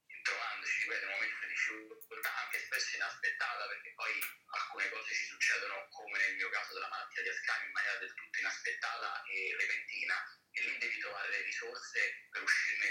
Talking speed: 175 wpm